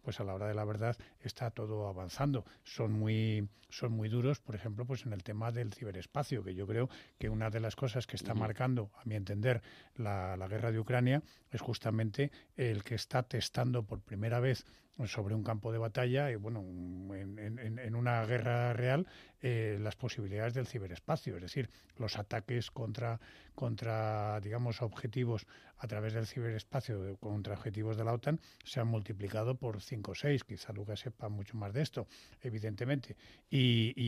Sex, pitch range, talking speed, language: male, 105-120 Hz, 180 wpm, Spanish